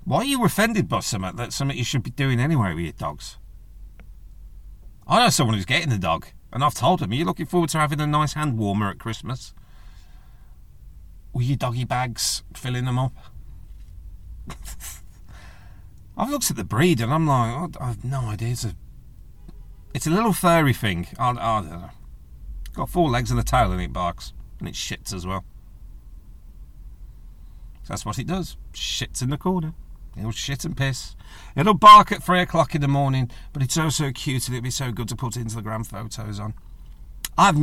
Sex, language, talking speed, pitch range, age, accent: male, English, 195 wpm, 90-135 Hz, 40-59, British